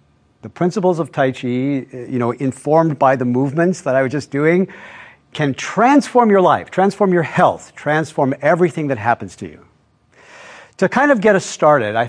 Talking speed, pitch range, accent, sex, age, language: 180 wpm, 125-175 Hz, American, male, 50-69, English